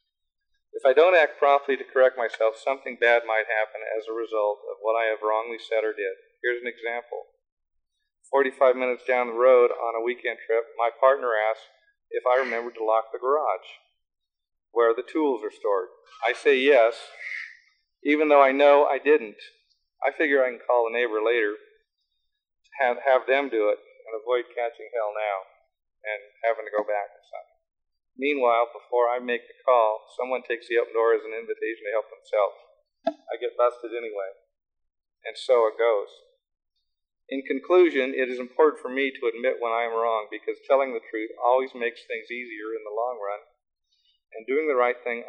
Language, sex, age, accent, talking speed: English, male, 40-59, American, 185 wpm